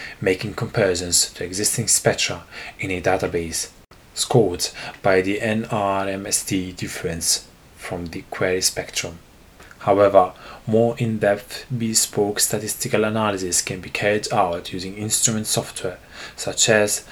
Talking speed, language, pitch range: 115 wpm, English, 95-120 Hz